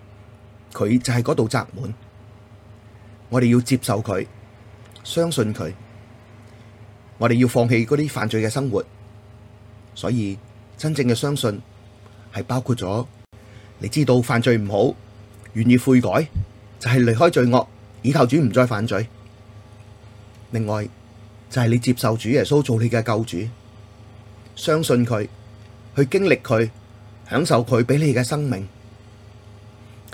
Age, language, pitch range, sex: 30-49, Chinese, 105-125 Hz, male